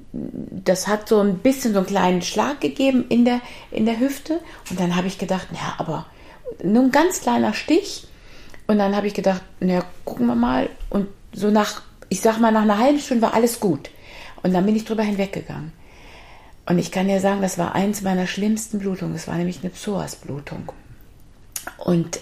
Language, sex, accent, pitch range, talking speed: German, female, German, 170-215 Hz, 200 wpm